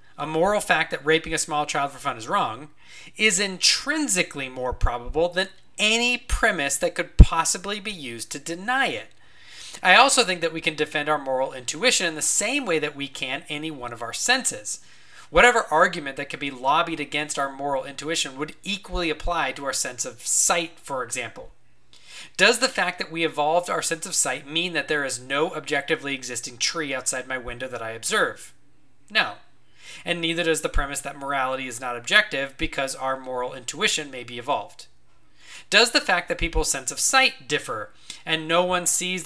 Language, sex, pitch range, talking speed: English, male, 130-175 Hz, 190 wpm